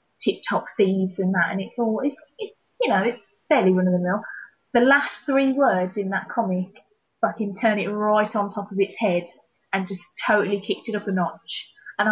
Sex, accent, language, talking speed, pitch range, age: female, British, English, 195 wpm, 185-240 Hz, 20-39